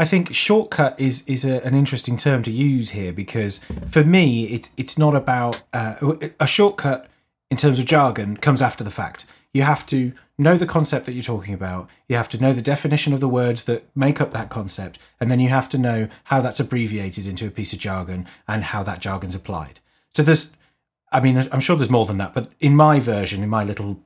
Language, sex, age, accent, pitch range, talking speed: English, male, 30-49, British, 110-145 Hz, 225 wpm